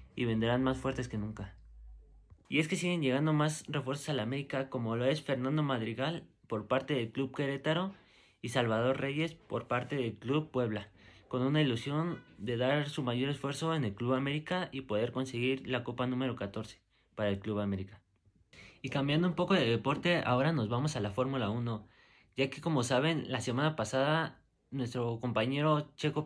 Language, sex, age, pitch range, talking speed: Spanish, male, 30-49, 120-150 Hz, 185 wpm